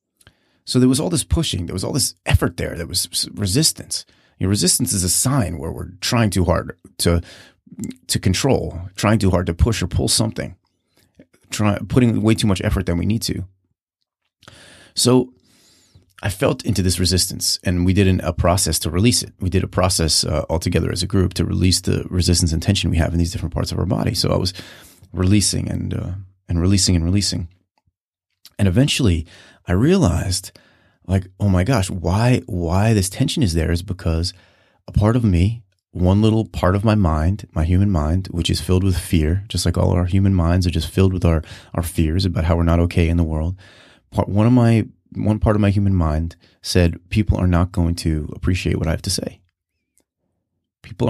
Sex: male